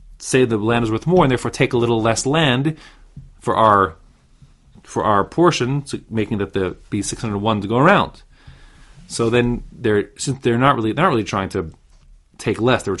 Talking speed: 210 wpm